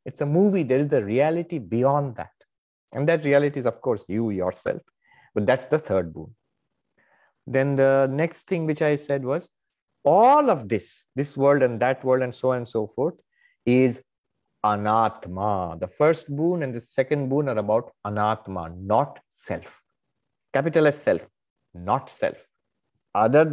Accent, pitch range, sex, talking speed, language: Indian, 105-145 Hz, male, 165 wpm, English